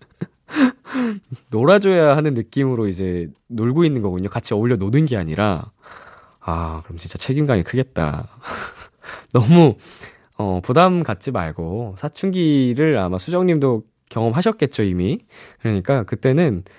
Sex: male